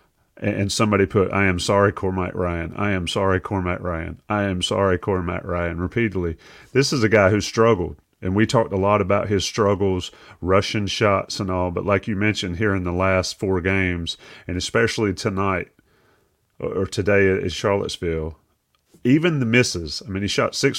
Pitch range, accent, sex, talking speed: 90-110 Hz, American, male, 180 wpm